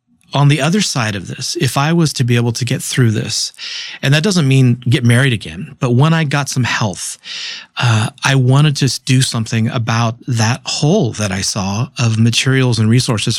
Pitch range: 115-140 Hz